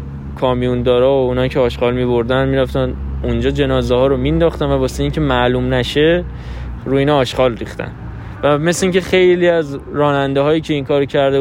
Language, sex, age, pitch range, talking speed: Persian, male, 20-39, 120-160 Hz, 180 wpm